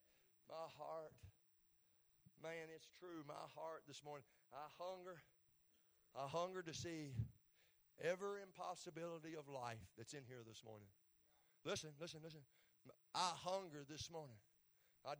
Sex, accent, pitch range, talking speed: male, American, 120-195 Hz, 125 wpm